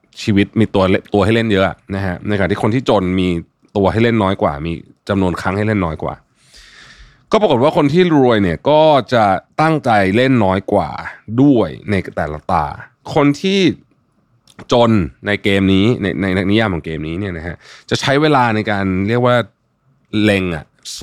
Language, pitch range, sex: Thai, 95-125 Hz, male